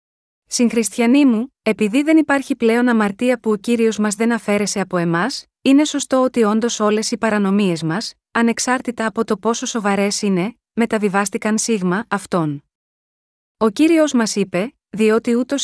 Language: Greek